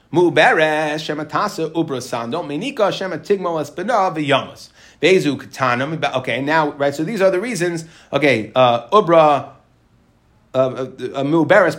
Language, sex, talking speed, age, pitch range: English, male, 110 wpm, 30-49, 150-195 Hz